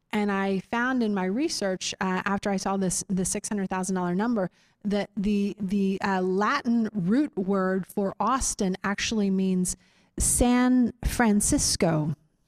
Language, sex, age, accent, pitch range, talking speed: English, female, 30-49, American, 190-240 Hz, 145 wpm